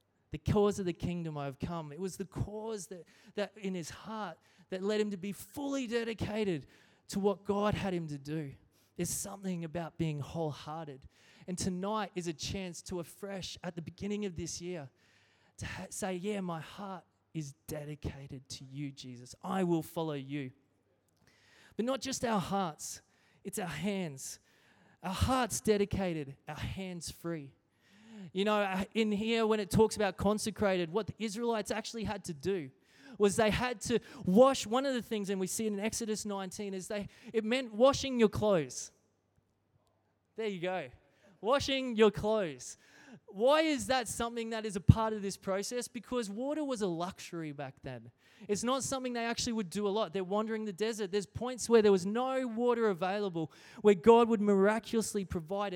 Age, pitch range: 20-39, 160-220 Hz